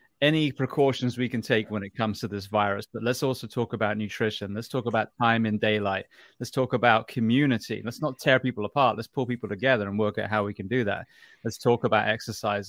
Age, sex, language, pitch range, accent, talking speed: 30-49, male, English, 105-125 Hz, British, 225 wpm